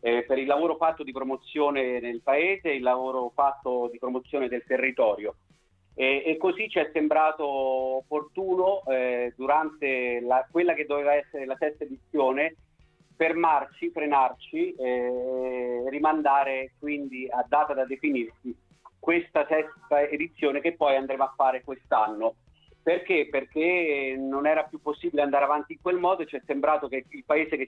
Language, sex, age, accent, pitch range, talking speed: Italian, male, 40-59, native, 130-170 Hz, 155 wpm